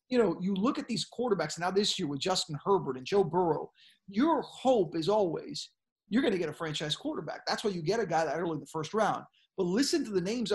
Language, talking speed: English, 250 wpm